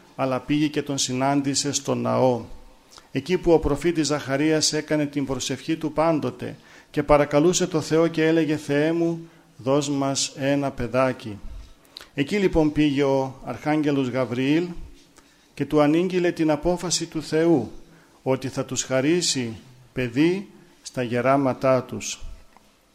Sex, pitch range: male, 130-160 Hz